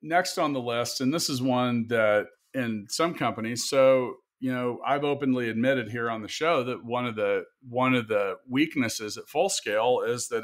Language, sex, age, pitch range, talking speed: English, male, 40-59, 120-135 Hz, 200 wpm